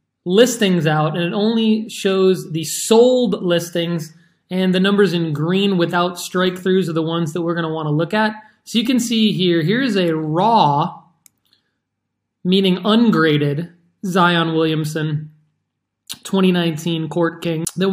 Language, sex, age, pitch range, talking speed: English, male, 20-39, 155-200 Hz, 135 wpm